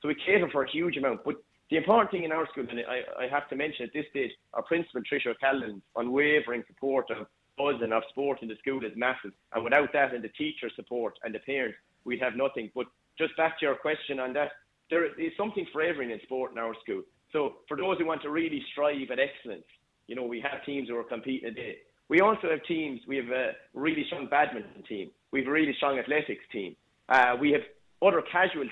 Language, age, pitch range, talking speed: English, 30-49, 125-160 Hz, 230 wpm